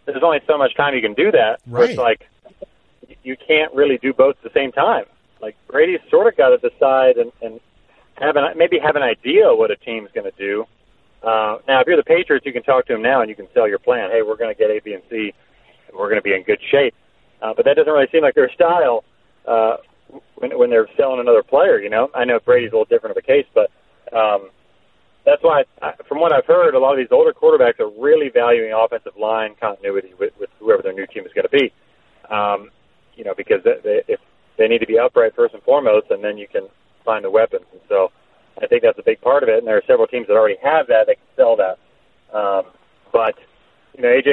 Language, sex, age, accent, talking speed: English, male, 40-59, American, 250 wpm